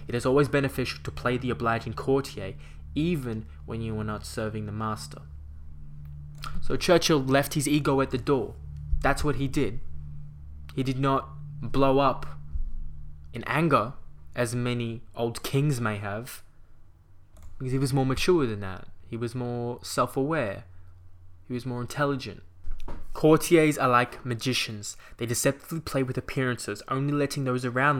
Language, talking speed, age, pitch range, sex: English, 150 wpm, 20-39, 105-135 Hz, male